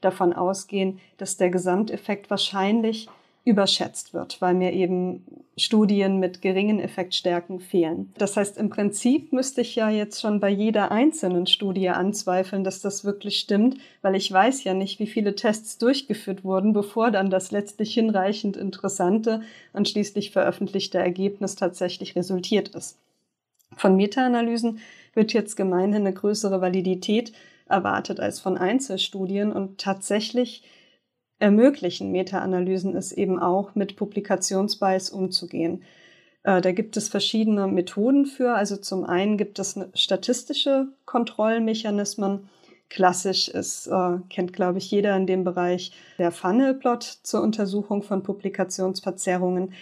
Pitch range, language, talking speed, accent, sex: 185-215 Hz, German, 130 wpm, German, female